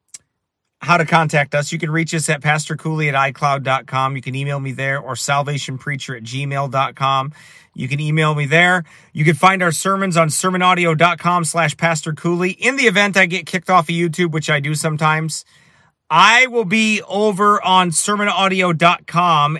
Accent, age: American, 30-49